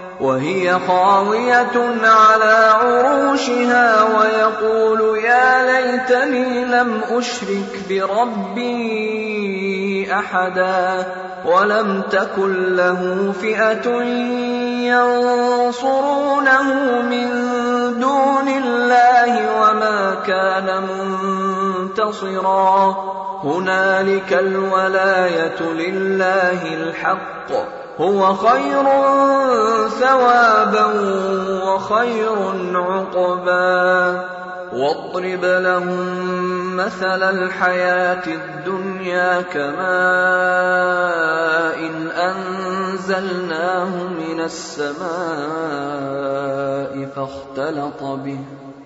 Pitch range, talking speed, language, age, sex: 180-230 Hz, 30 wpm, Bengali, 30-49, male